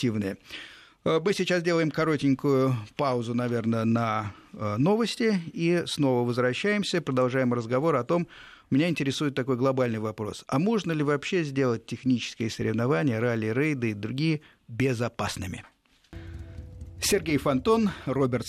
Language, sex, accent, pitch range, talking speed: Russian, male, native, 115-160 Hz, 115 wpm